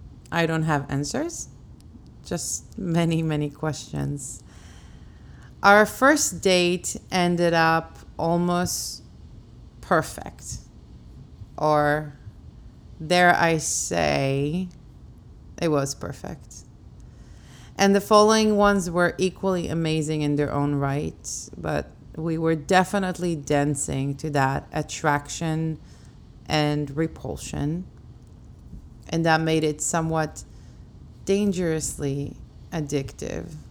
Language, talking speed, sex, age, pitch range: English, 90 wpm, female, 30-49, 140-170 Hz